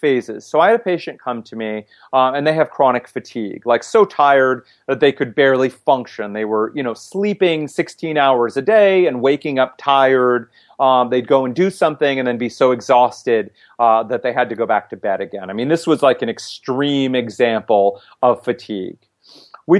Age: 30-49